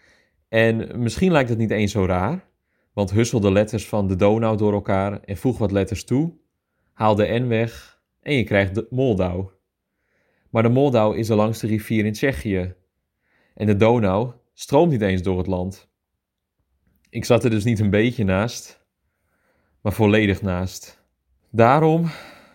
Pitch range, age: 100-130 Hz, 30-49